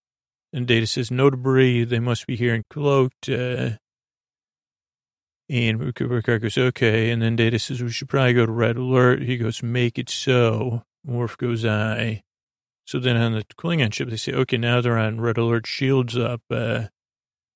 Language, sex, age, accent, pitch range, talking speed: English, male, 40-59, American, 115-130 Hz, 180 wpm